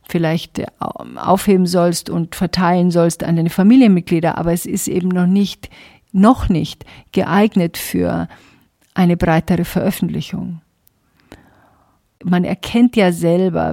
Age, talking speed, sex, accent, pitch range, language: 50-69, 110 wpm, female, German, 160-190 Hz, German